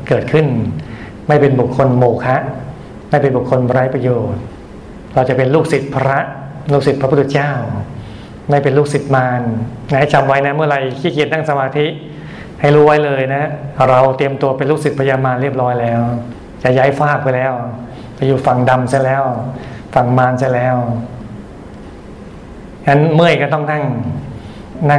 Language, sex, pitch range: Thai, male, 125-145 Hz